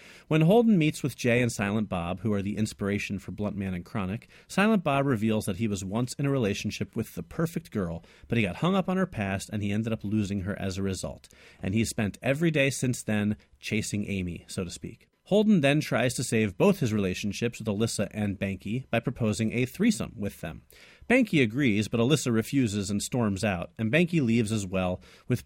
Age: 40-59